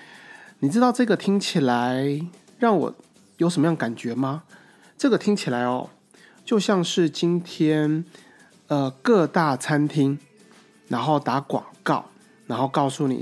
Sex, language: male, Chinese